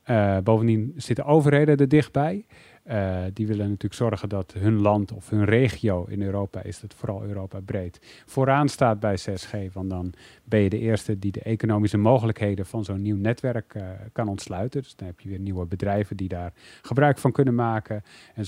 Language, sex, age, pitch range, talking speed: Dutch, male, 30-49, 100-135 Hz, 190 wpm